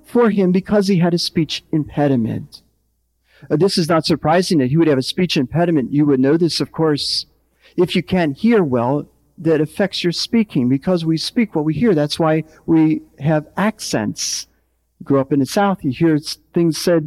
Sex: male